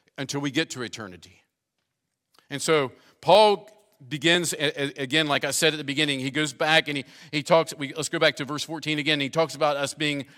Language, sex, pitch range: English, male, 135-160 Hz